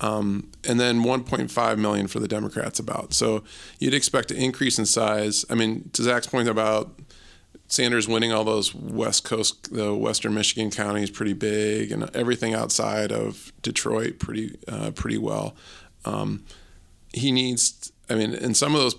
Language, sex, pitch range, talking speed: English, male, 105-120 Hz, 165 wpm